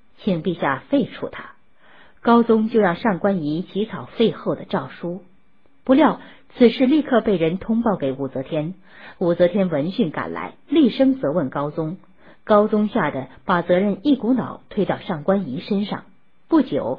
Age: 50-69